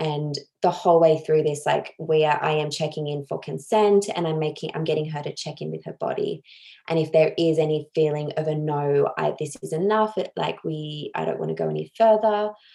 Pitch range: 155-175 Hz